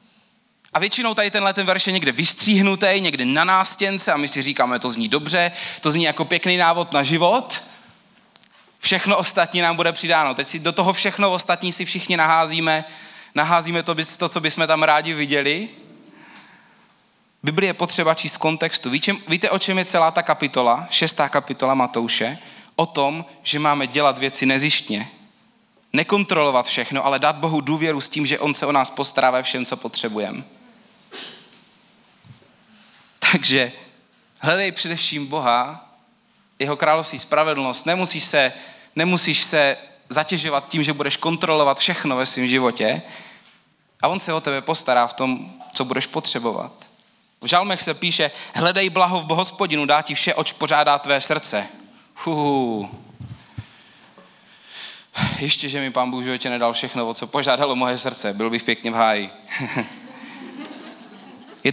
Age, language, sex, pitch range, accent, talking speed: 30-49, Czech, male, 140-185 Hz, native, 150 wpm